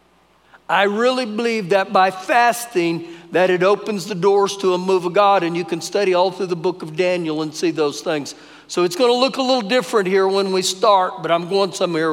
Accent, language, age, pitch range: American, English, 50-69, 190-240 Hz